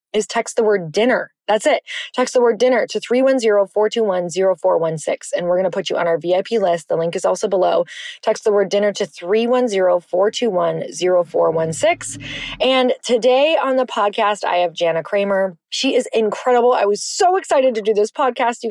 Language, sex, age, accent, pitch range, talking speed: English, female, 20-39, American, 180-235 Hz, 175 wpm